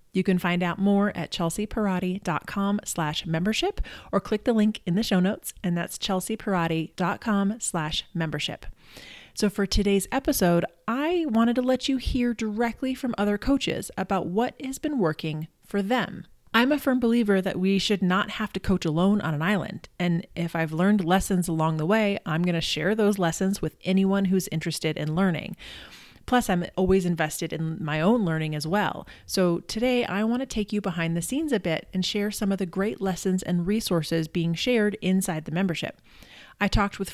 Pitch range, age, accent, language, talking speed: 170-210 Hz, 30-49, American, English, 190 wpm